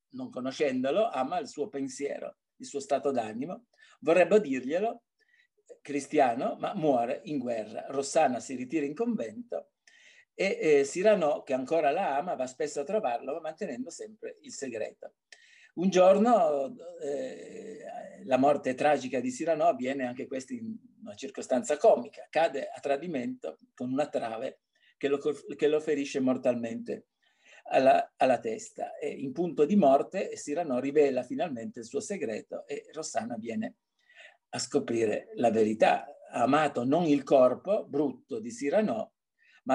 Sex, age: male, 50-69